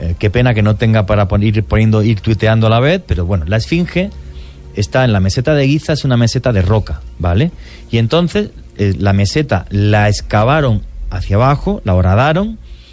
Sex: male